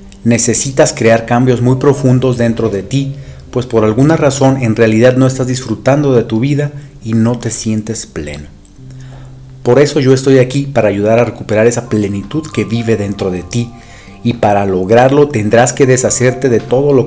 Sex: male